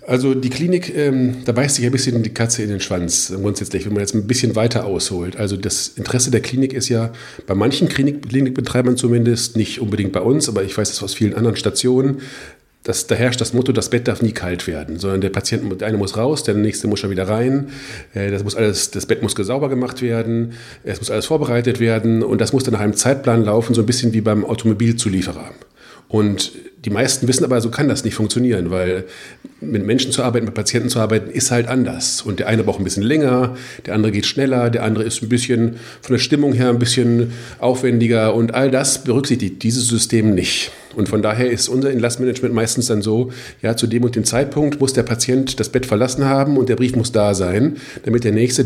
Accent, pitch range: German, 105-125 Hz